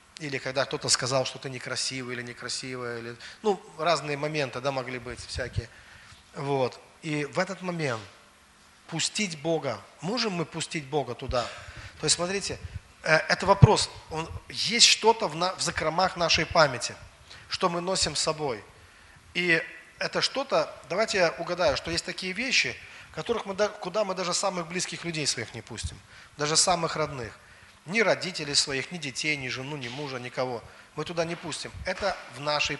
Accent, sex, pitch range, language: native, male, 125-180 Hz, Russian